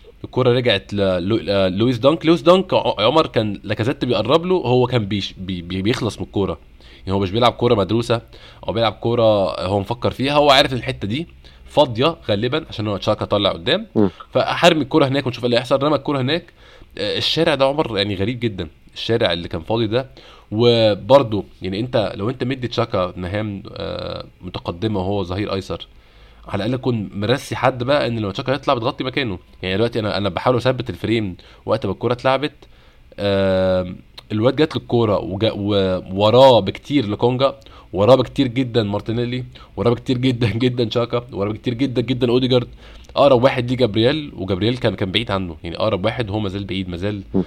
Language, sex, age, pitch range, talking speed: Arabic, male, 20-39, 100-130 Hz, 170 wpm